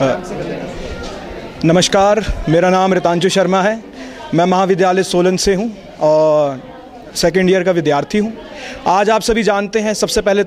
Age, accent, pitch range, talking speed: 30-49, native, 190-225 Hz, 140 wpm